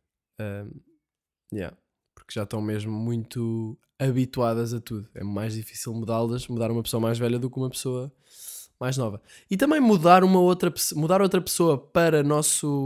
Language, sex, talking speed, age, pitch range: Portuguese, male, 170 wpm, 10-29, 120-165 Hz